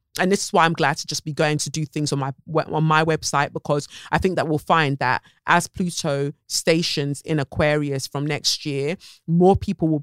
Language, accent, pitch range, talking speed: English, British, 140-165 Hz, 215 wpm